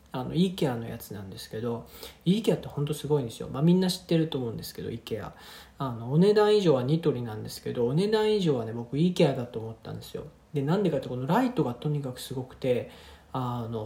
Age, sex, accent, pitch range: 40-59, male, native, 135-180 Hz